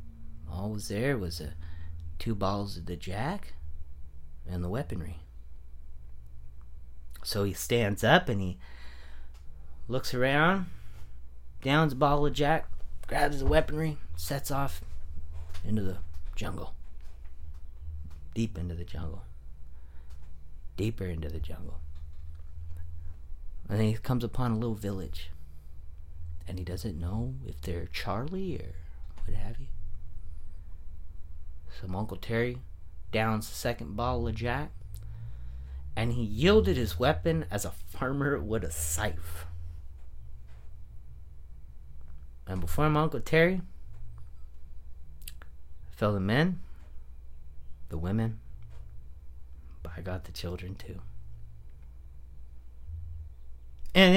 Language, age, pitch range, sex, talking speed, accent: English, 30-49, 70-105 Hz, male, 110 wpm, American